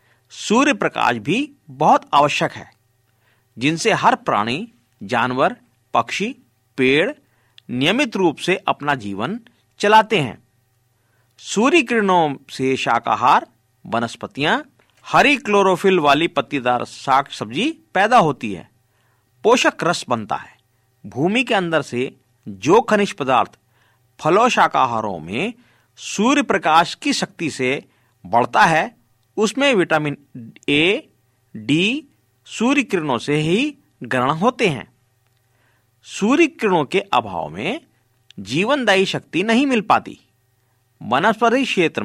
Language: Hindi